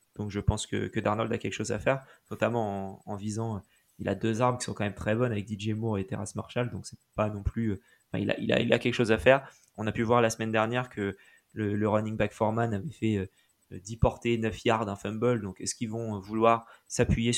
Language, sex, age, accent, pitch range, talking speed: French, male, 20-39, French, 105-120 Hz, 260 wpm